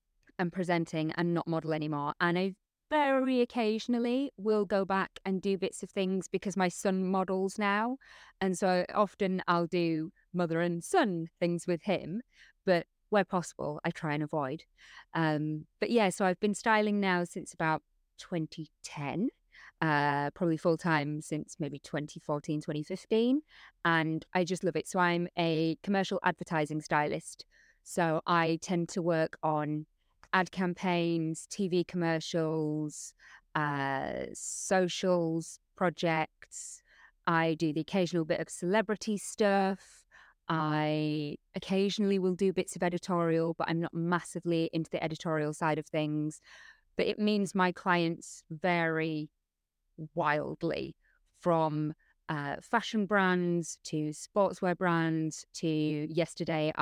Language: English